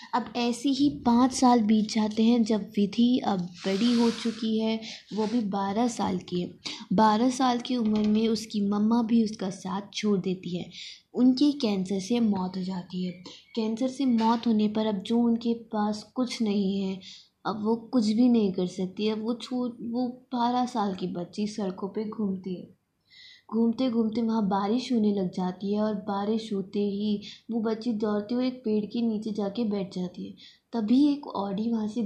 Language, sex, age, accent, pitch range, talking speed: Hindi, female, 20-39, native, 200-235 Hz, 190 wpm